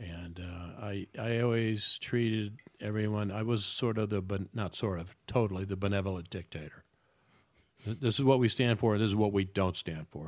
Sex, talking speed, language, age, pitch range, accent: male, 200 wpm, English, 50-69, 95-110 Hz, American